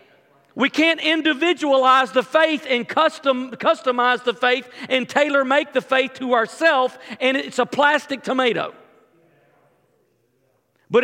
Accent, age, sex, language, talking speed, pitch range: American, 40-59, male, English, 125 wpm, 255-300 Hz